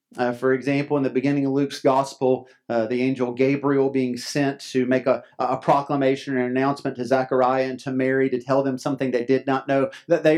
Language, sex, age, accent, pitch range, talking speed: English, male, 40-59, American, 130-165 Hz, 215 wpm